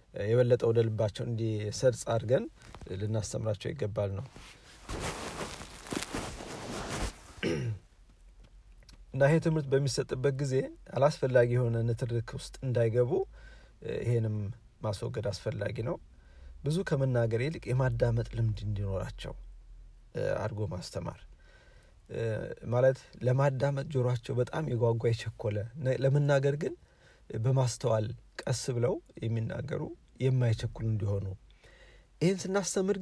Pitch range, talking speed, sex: 110-145 Hz, 80 wpm, male